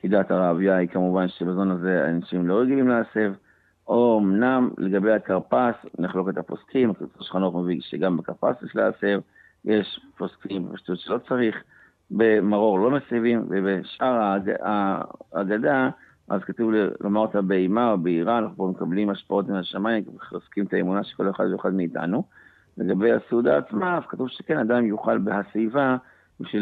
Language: Hebrew